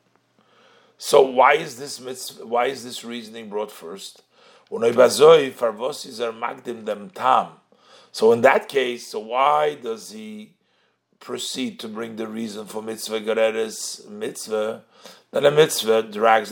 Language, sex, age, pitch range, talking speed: English, male, 50-69, 110-175 Hz, 115 wpm